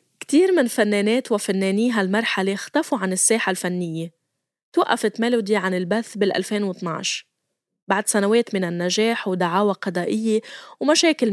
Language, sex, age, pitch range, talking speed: Arabic, female, 20-39, 190-240 Hz, 115 wpm